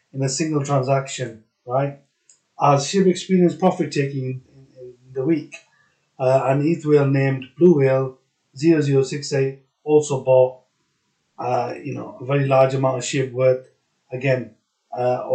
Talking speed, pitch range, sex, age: 135 wpm, 130-150 Hz, male, 30-49